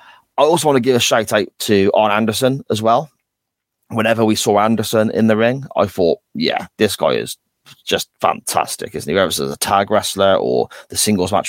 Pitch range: 95-115 Hz